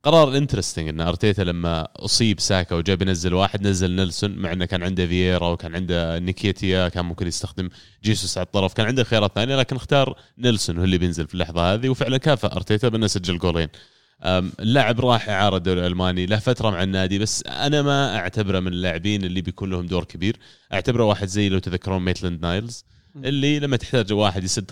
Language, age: Arabic, 30-49